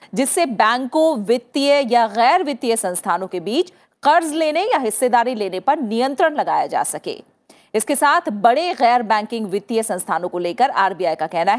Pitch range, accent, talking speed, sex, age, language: 215-290 Hz, native, 160 wpm, female, 40-59, Hindi